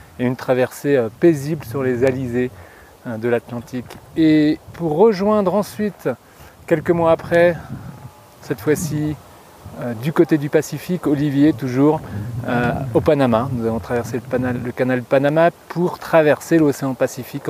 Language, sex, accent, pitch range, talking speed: French, male, French, 125-155 Hz, 130 wpm